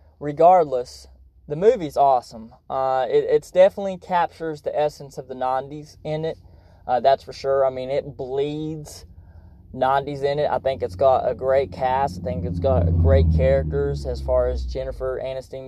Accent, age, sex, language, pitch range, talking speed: American, 20-39, male, English, 115-165 Hz, 170 wpm